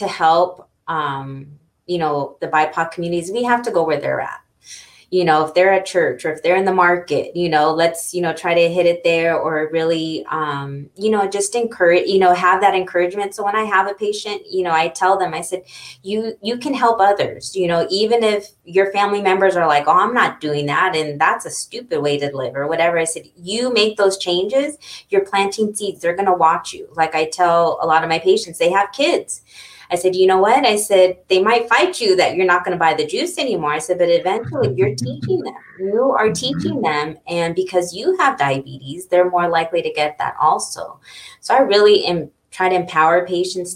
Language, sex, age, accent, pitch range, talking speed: English, female, 20-39, American, 160-200 Hz, 225 wpm